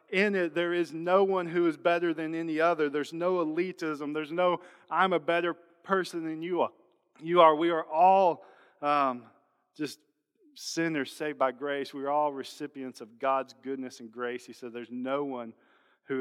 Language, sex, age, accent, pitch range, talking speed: English, male, 40-59, American, 125-160 Hz, 180 wpm